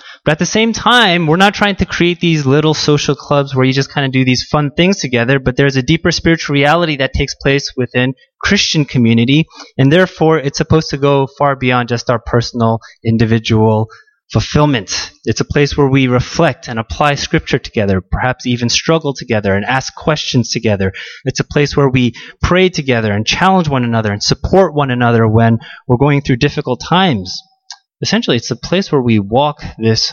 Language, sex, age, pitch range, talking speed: English, male, 20-39, 120-155 Hz, 190 wpm